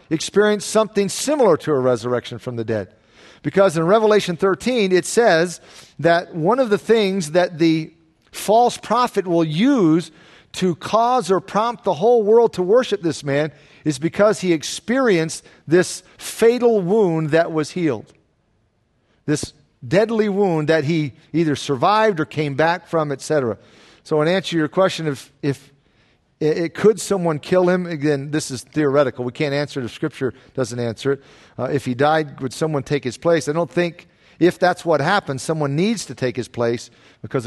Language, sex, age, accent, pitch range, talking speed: English, male, 50-69, American, 135-180 Hz, 175 wpm